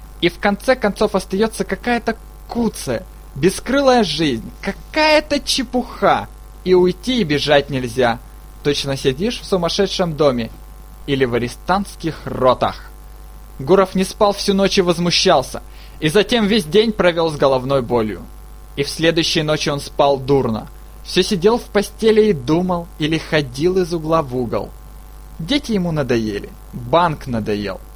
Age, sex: 20-39, male